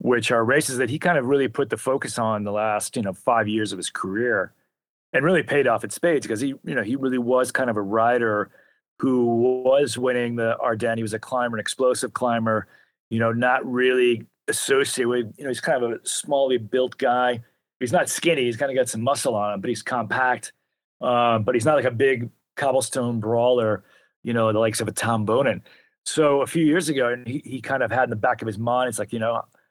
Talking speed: 235 wpm